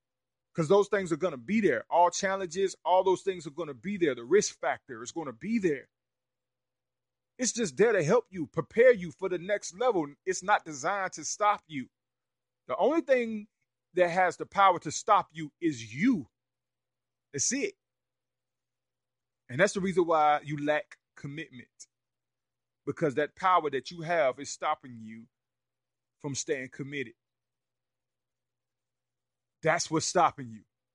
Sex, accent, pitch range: male, American, 130-180 Hz